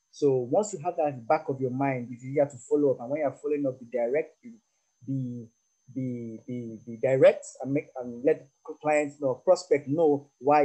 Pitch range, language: 125-150 Hz, English